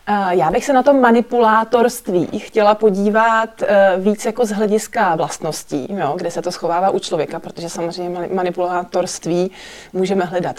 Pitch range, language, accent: 185-215 Hz, Czech, native